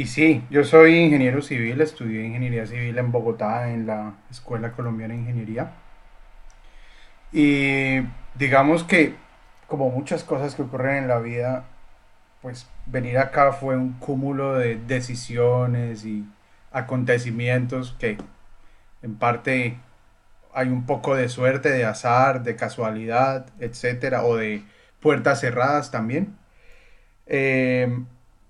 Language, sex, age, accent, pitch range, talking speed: Spanish, male, 30-49, Colombian, 115-140 Hz, 120 wpm